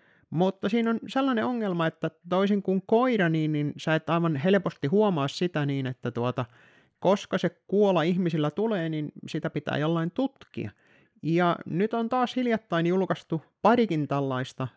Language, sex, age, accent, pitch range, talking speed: Finnish, male, 30-49, native, 130-195 Hz, 150 wpm